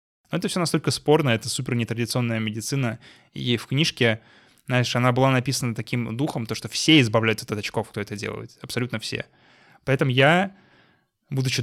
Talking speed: 165 wpm